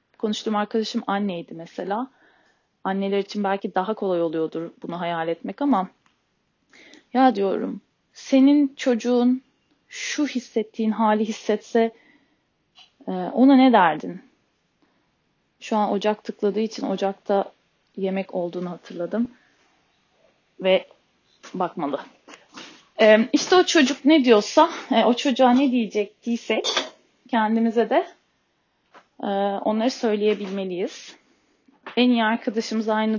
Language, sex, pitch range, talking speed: Turkish, female, 205-255 Hz, 100 wpm